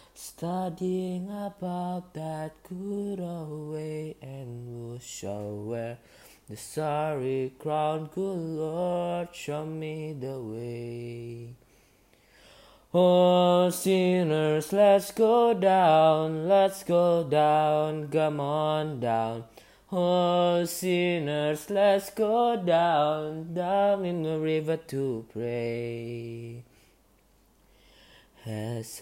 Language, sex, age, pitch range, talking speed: Indonesian, male, 20-39, 120-175 Hz, 85 wpm